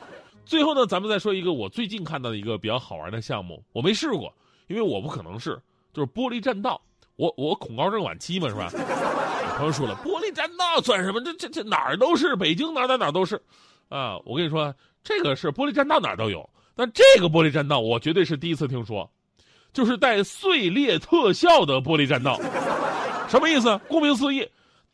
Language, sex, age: Chinese, male, 30-49